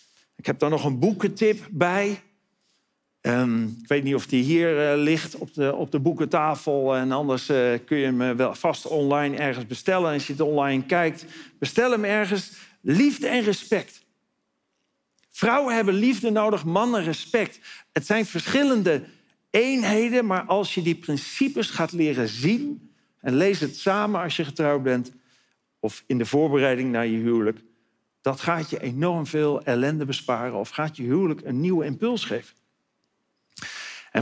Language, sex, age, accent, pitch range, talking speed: Dutch, male, 50-69, Dutch, 140-200 Hz, 165 wpm